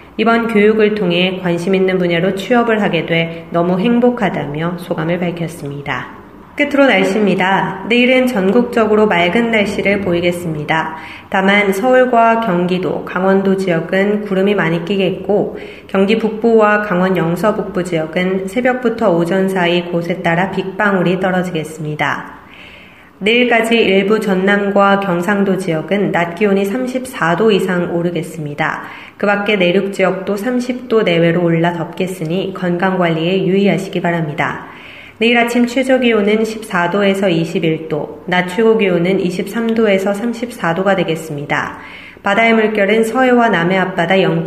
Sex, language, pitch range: female, Korean, 175-220 Hz